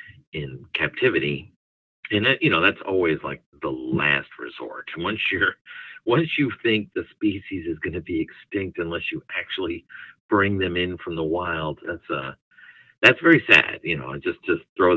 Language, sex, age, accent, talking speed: English, male, 50-69, American, 170 wpm